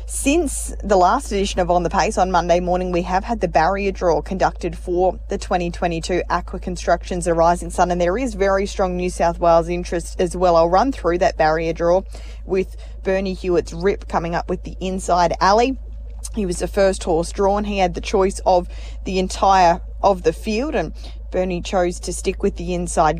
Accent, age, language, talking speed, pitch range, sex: Australian, 20-39, English, 195 wpm, 170-195 Hz, female